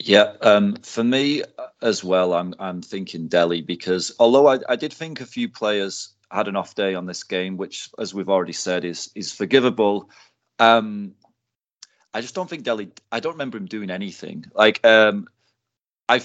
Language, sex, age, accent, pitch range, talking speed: English, male, 40-59, British, 90-115 Hz, 180 wpm